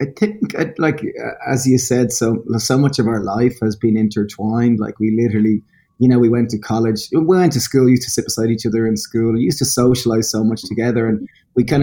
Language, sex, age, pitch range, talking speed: English, male, 20-39, 115-135 Hz, 235 wpm